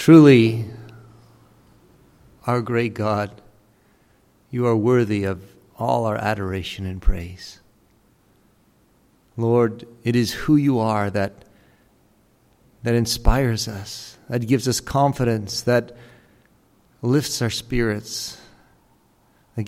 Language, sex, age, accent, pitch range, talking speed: English, male, 50-69, American, 105-120 Hz, 100 wpm